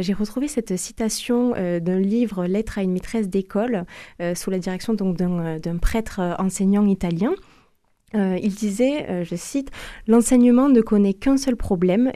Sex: female